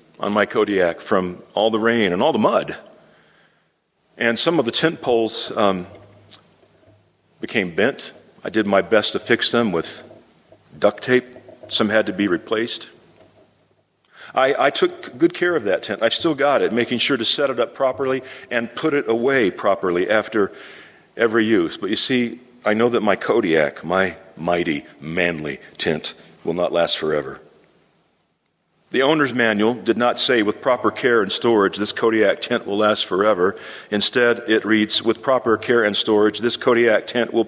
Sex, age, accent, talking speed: male, 50-69, American, 170 wpm